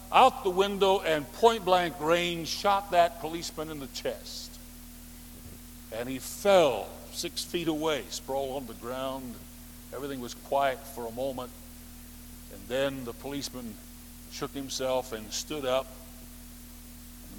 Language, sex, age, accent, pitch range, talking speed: English, male, 50-69, American, 110-170 Hz, 130 wpm